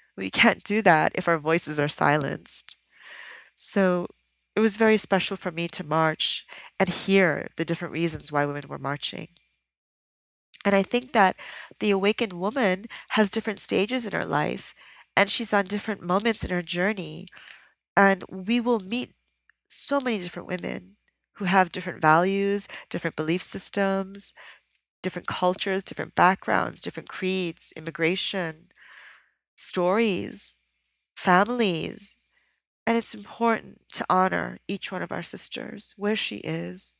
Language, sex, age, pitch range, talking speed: English, female, 40-59, 170-210 Hz, 140 wpm